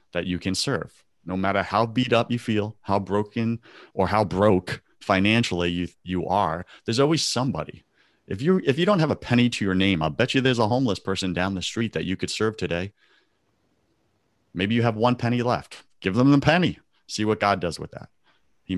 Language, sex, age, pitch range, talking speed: English, male, 30-49, 95-120 Hz, 210 wpm